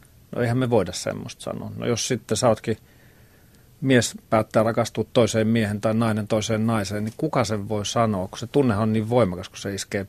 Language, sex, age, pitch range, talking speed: Finnish, male, 40-59, 100-120 Hz, 195 wpm